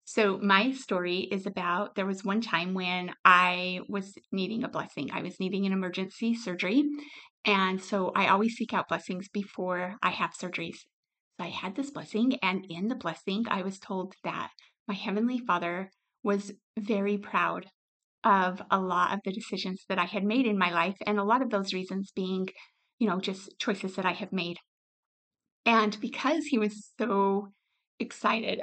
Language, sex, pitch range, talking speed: English, female, 190-225 Hz, 180 wpm